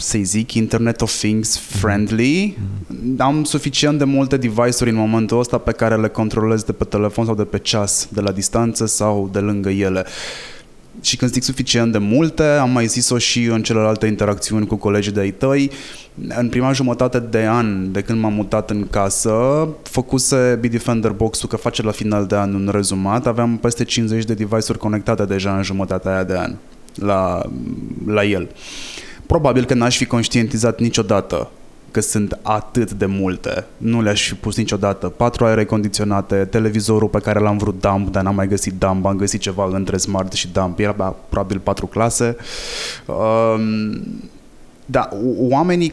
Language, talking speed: Romanian, 170 wpm